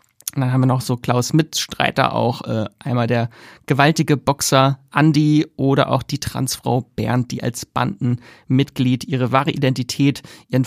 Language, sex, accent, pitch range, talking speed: German, male, German, 130-155 Hz, 145 wpm